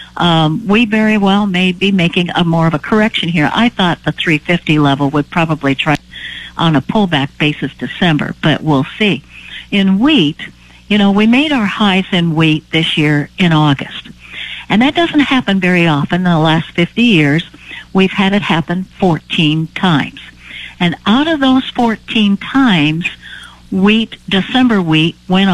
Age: 60-79